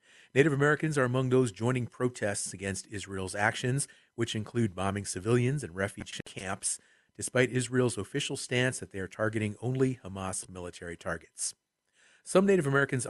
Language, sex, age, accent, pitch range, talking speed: English, male, 40-59, American, 95-130 Hz, 145 wpm